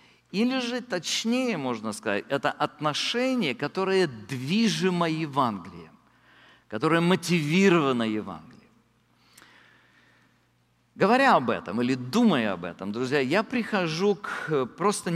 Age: 50-69